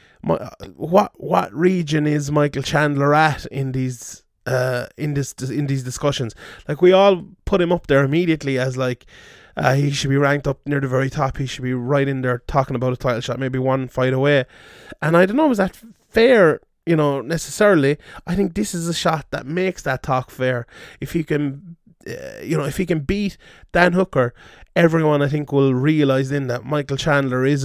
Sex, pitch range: male, 130-165 Hz